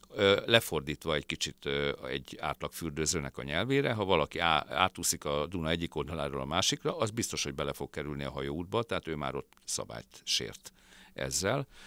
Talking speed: 155 wpm